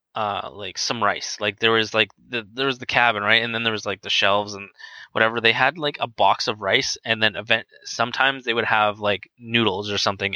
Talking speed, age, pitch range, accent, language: 240 wpm, 20-39, 100-120 Hz, American, English